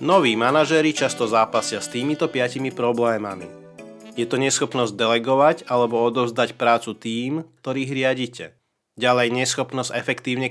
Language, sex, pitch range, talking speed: Slovak, male, 115-135 Hz, 120 wpm